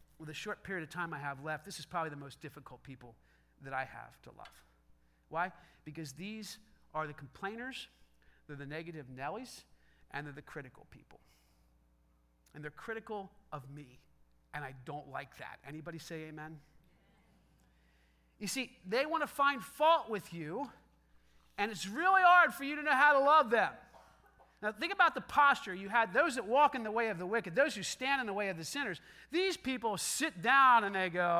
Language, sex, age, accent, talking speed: English, male, 40-59, American, 195 wpm